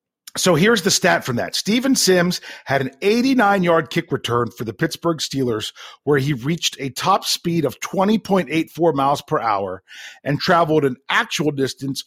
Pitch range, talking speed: 130-185 Hz, 165 wpm